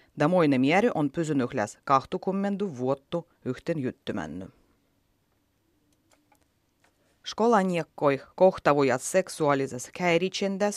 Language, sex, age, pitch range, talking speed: Finnish, female, 30-49, 135-190 Hz, 65 wpm